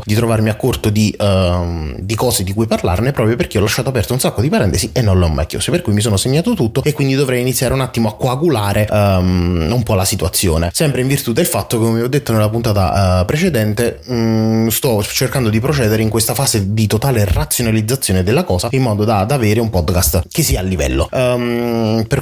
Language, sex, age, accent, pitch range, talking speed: Italian, male, 20-39, native, 100-130 Hz, 225 wpm